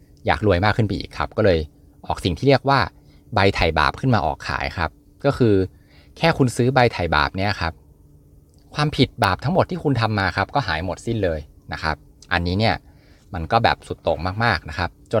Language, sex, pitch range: Thai, male, 80-110 Hz